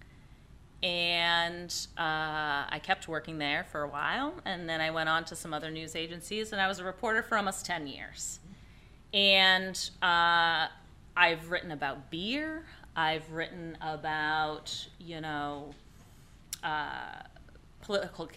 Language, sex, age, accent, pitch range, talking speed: English, female, 30-49, American, 155-200 Hz, 135 wpm